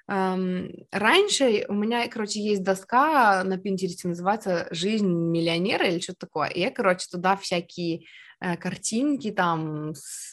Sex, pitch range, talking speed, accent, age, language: female, 175-225 Hz, 135 wpm, native, 20-39, Russian